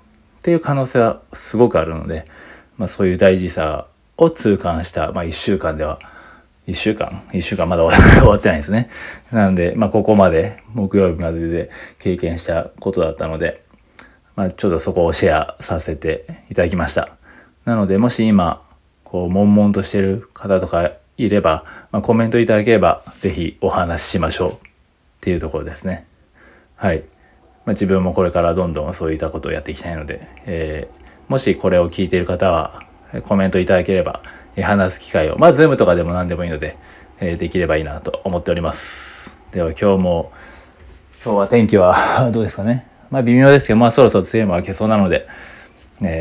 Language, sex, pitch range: Japanese, male, 80-105 Hz